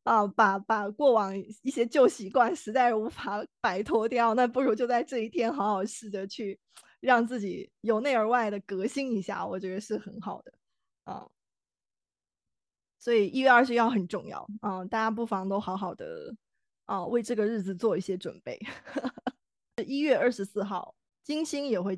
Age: 20-39